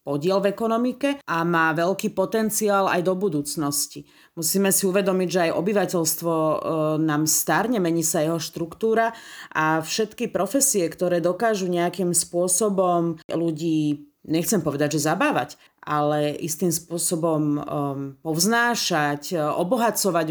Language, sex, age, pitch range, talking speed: Slovak, female, 30-49, 165-215 Hz, 115 wpm